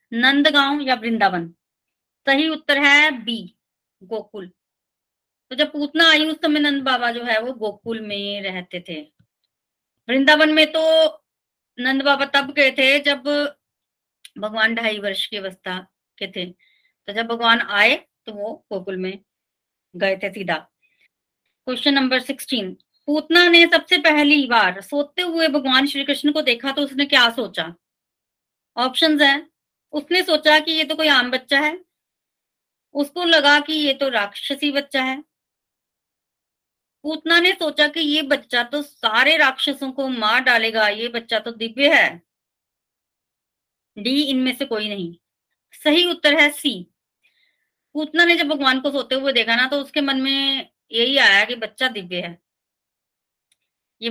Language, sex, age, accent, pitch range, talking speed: Hindi, female, 30-49, native, 220-300 Hz, 150 wpm